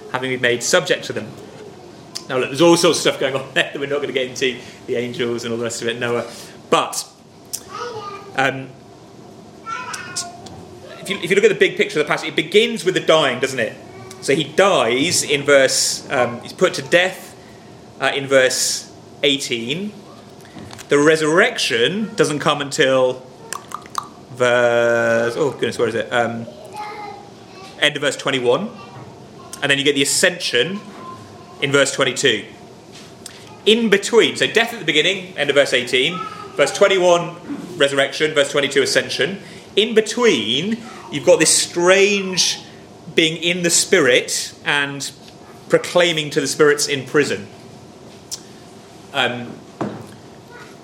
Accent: British